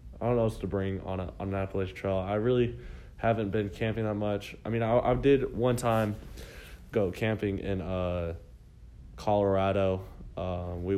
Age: 20-39